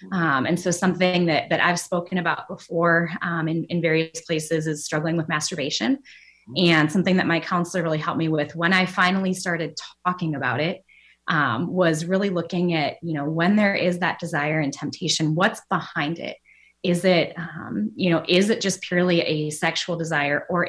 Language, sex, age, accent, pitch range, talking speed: English, female, 20-39, American, 160-190 Hz, 190 wpm